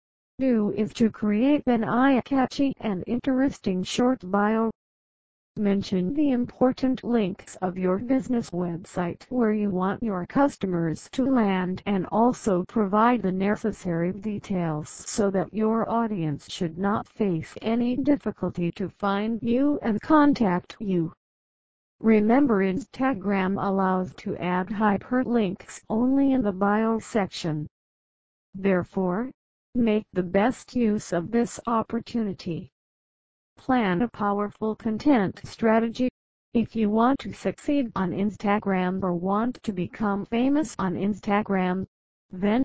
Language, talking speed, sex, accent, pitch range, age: English, 120 wpm, female, American, 190-240 Hz, 60-79